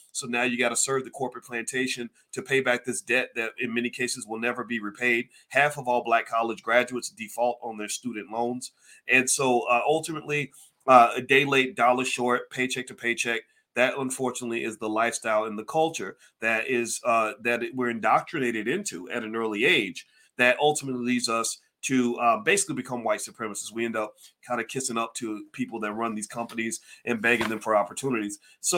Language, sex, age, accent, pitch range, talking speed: English, male, 30-49, American, 115-135 Hz, 195 wpm